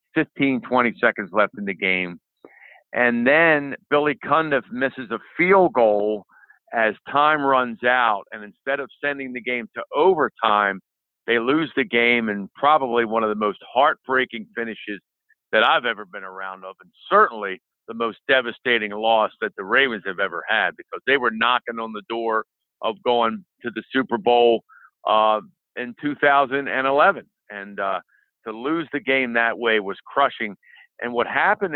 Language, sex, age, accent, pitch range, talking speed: English, male, 50-69, American, 110-145 Hz, 160 wpm